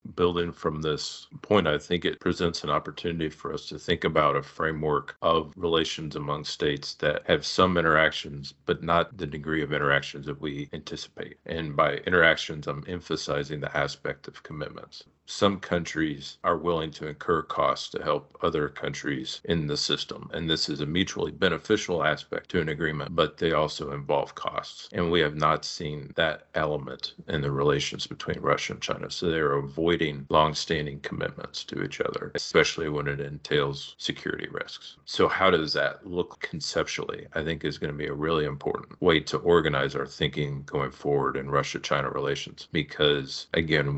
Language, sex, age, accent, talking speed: English, male, 50-69, American, 170 wpm